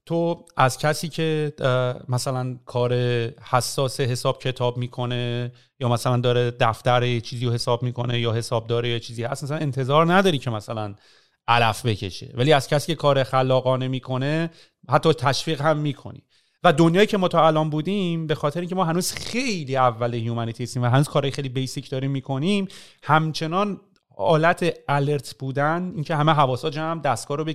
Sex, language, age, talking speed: male, Persian, 30-49, 165 wpm